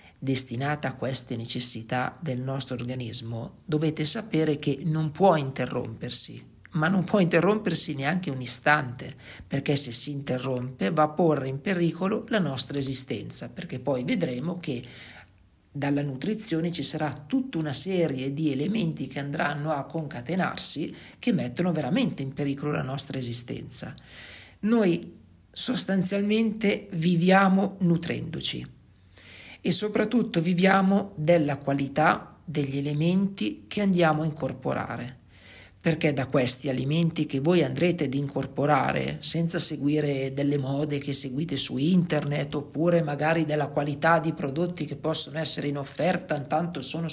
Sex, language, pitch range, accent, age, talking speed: male, Italian, 135-170 Hz, native, 50-69, 130 wpm